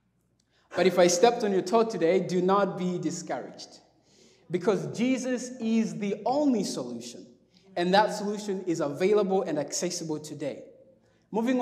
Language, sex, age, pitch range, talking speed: English, male, 20-39, 170-225 Hz, 140 wpm